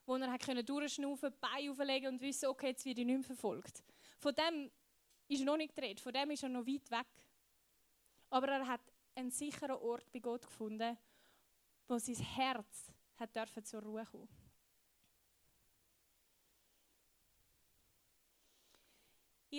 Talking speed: 140 wpm